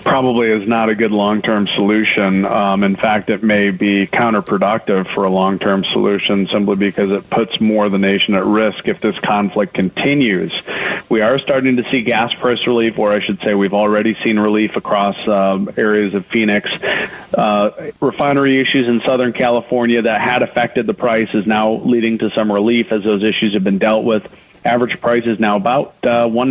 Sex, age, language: male, 40-59, English